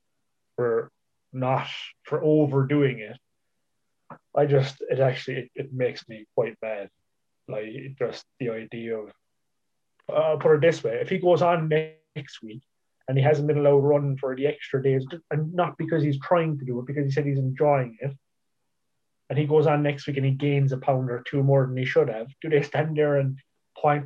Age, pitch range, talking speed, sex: 20-39, 130-155 Hz, 200 wpm, male